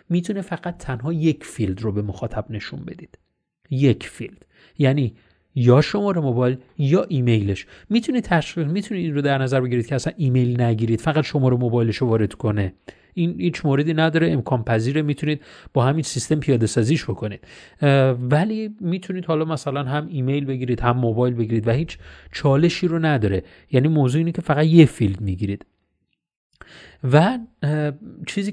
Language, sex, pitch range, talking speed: Persian, male, 120-160 Hz, 160 wpm